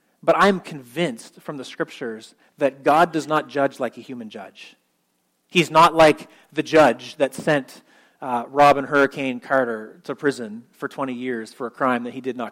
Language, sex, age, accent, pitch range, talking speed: English, male, 30-49, American, 135-165 Hz, 180 wpm